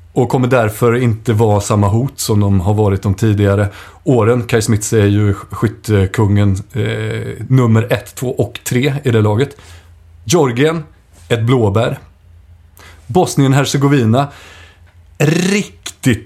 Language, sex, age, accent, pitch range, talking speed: Swedish, male, 30-49, native, 95-135 Hz, 120 wpm